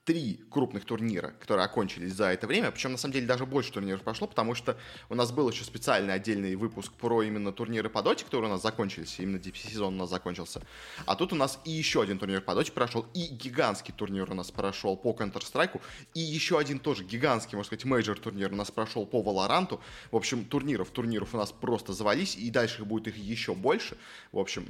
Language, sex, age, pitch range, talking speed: Russian, male, 20-39, 100-125 Hz, 215 wpm